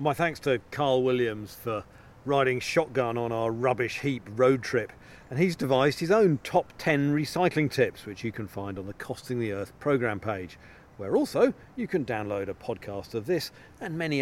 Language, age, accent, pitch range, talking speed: English, 40-59, British, 105-140 Hz, 190 wpm